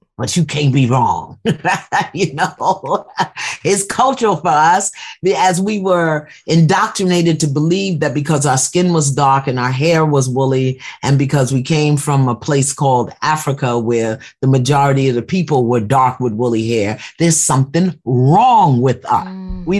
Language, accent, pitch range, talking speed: English, American, 135-180 Hz, 165 wpm